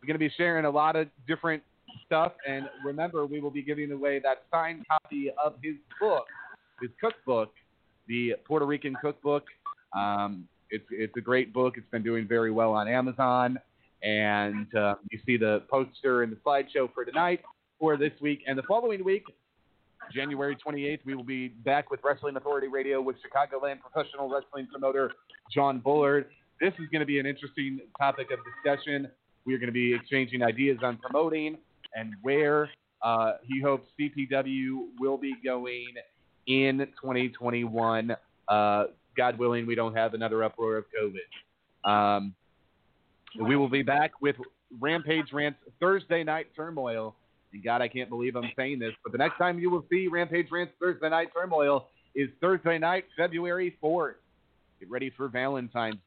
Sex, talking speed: male, 165 wpm